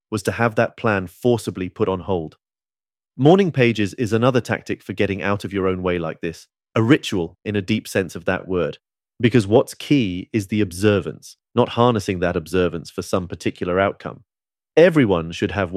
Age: 30-49